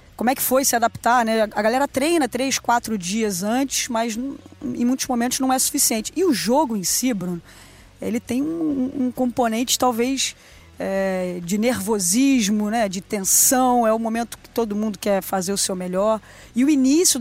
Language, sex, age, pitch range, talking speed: Portuguese, female, 20-39, 200-250 Hz, 180 wpm